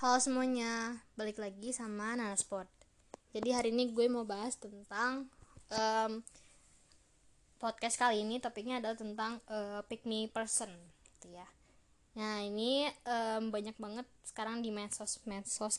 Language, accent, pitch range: Indonesian, native, 210-255 Hz